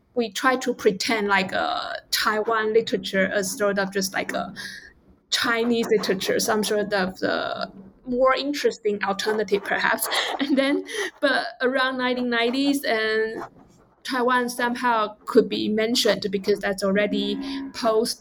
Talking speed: 130 wpm